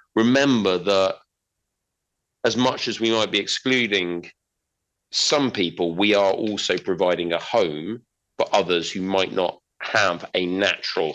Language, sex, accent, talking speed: English, male, British, 135 wpm